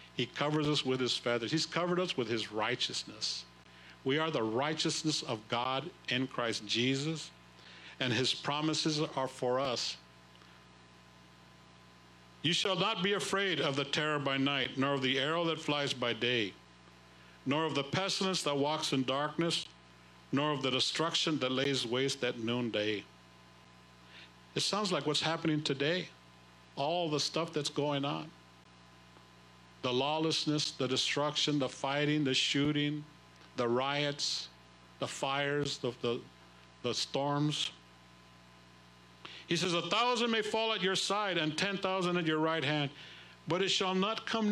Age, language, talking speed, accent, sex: 60-79, English, 150 wpm, American, male